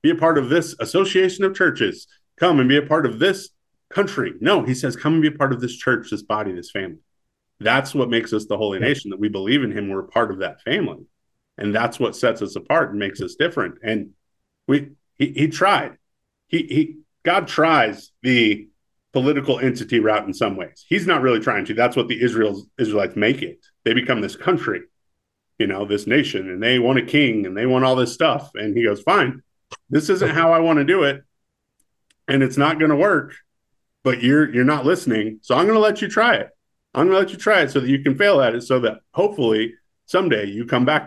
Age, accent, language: 30-49, American, English